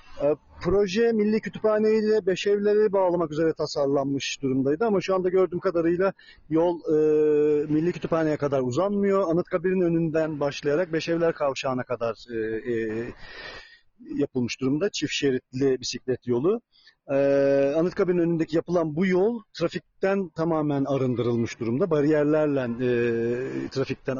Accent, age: native, 40-59